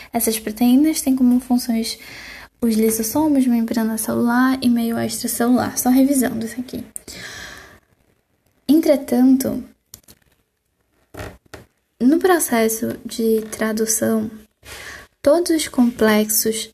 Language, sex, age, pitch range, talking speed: Portuguese, female, 10-29, 220-255 Hz, 90 wpm